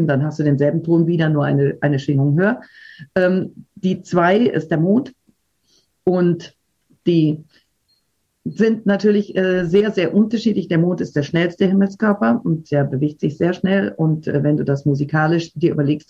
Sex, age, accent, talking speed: female, 50-69, German, 170 wpm